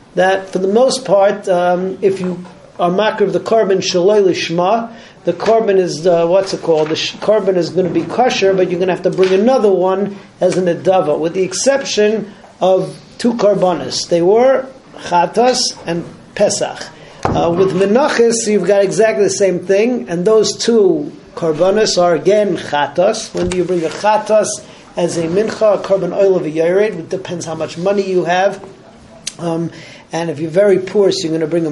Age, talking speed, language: 50-69, 195 wpm, English